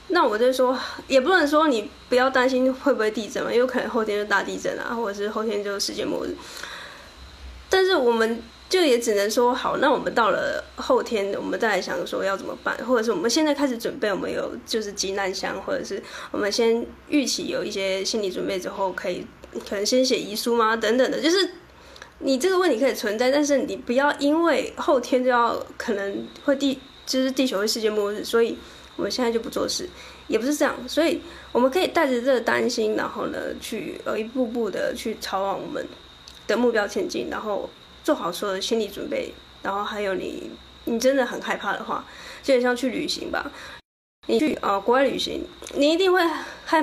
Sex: female